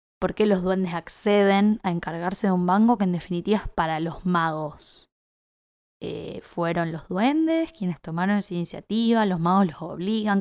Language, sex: Spanish, female